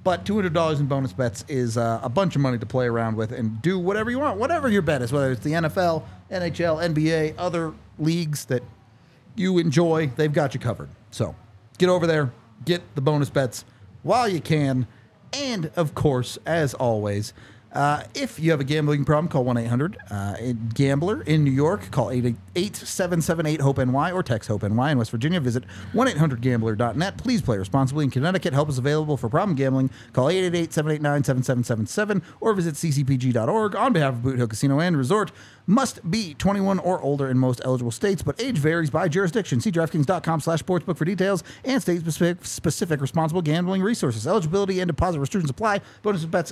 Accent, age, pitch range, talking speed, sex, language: American, 40-59, 125-175 Hz, 170 wpm, male, English